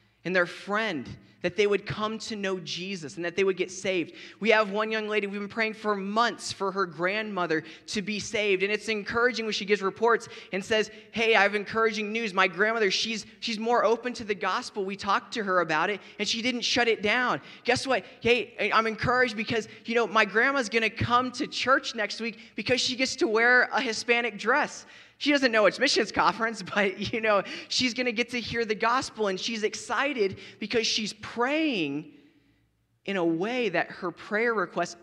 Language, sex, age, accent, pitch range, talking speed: English, male, 20-39, American, 185-230 Hz, 210 wpm